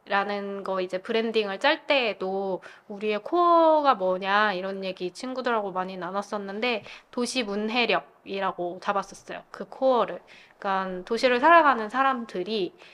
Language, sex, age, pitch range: Korean, female, 20-39, 195-255 Hz